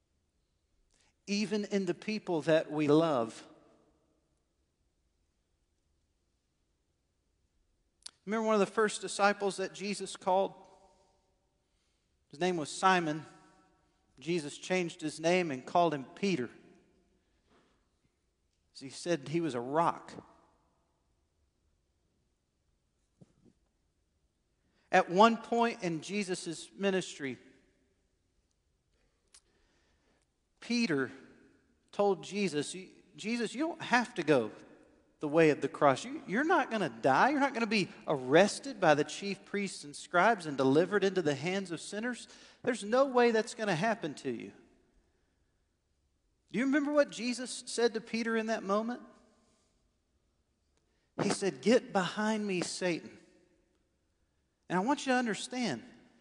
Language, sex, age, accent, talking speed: English, male, 50-69, American, 120 wpm